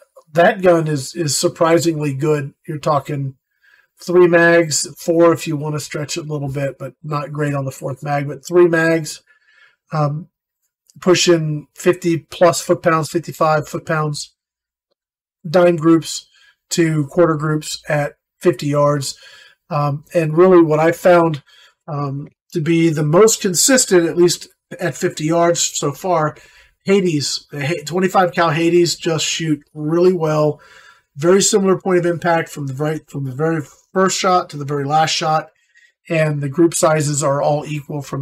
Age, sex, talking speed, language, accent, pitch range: 40-59, male, 155 wpm, English, American, 145-175 Hz